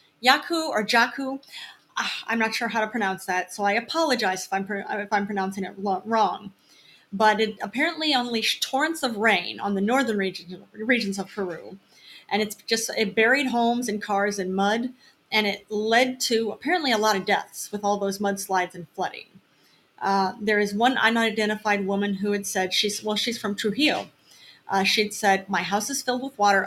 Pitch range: 195-230 Hz